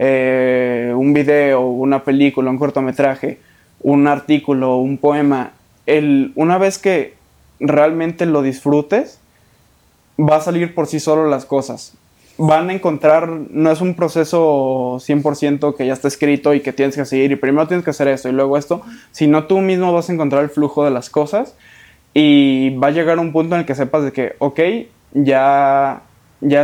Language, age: Spanish, 20-39